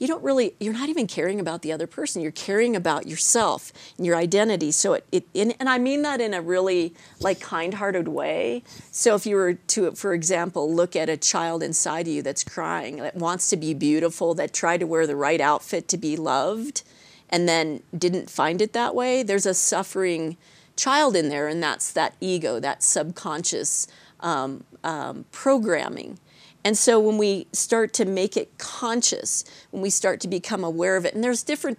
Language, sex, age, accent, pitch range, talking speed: English, female, 40-59, American, 165-215 Hz, 200 wpm